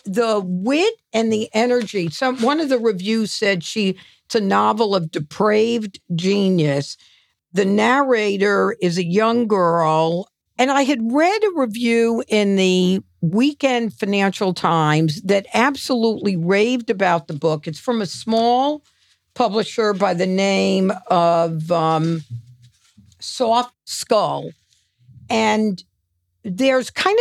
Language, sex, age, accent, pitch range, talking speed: English, female, 50-69, American, 175-240 Hz, 125 wpm